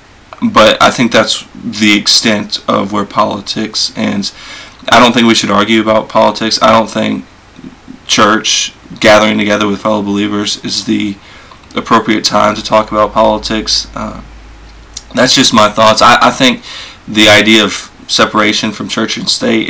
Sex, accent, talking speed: male, American, 155 wpm